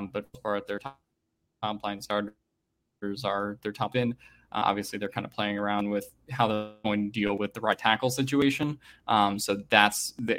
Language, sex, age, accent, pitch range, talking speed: English, male, 10-29, American, 105-125 Hz, 200 wpm